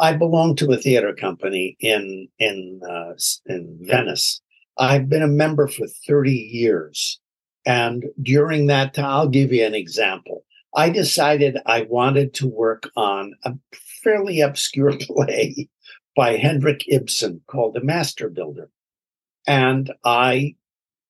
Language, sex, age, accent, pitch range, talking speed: English, male, 60-79, American, 125-150 Hz, 135 wpm